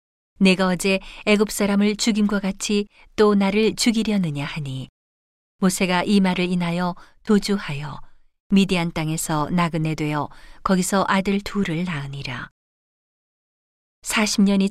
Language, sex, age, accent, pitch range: Korean, female, 40-59, native, 160-200 Hz